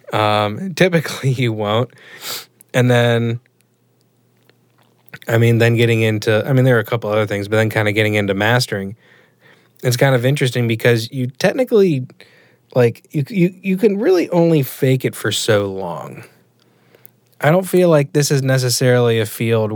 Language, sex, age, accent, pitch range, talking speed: English, male, 10-29, American, 110-150 Hz, 165 wpm